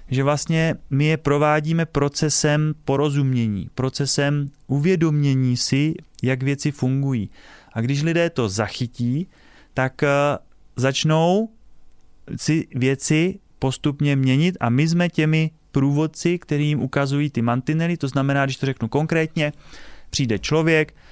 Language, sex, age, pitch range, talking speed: Slovak, male, 30-49, 120-155 Hz, 115 wpm